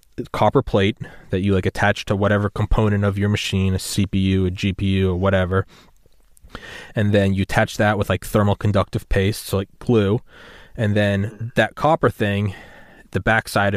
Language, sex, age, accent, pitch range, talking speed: English, male, 20-39, American, 100-115 Hz, 175 wpm